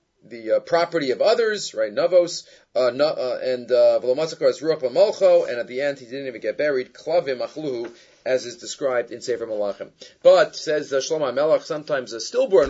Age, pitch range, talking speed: 30-49, 145-210 Hz, 165 wpm